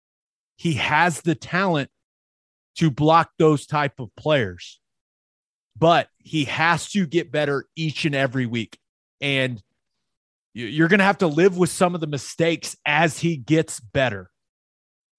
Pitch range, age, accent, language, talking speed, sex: 125-165 Hz, 30-49, American, English, 140 wpm, male